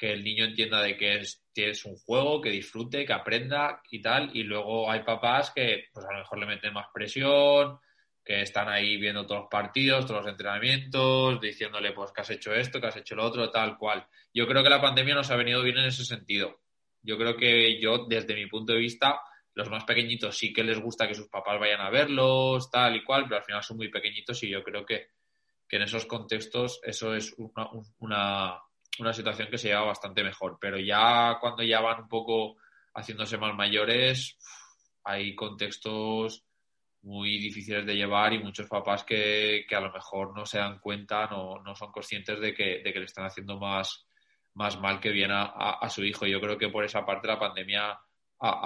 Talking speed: 210 wpm